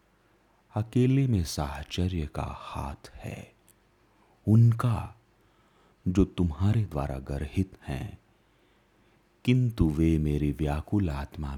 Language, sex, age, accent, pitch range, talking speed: Hindi, male, 40-59, native, 80-110 Hz, 90 wpm